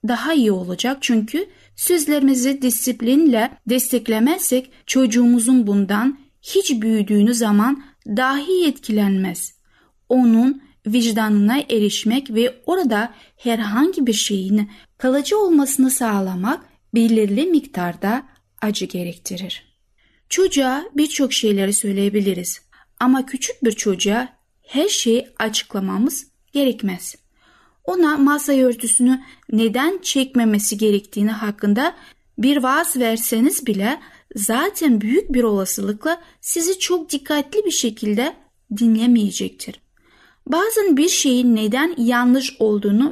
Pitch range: 215-280 Hz